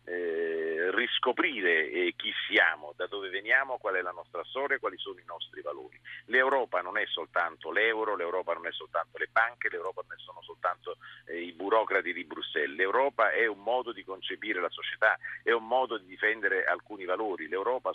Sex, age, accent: male, 50-69, native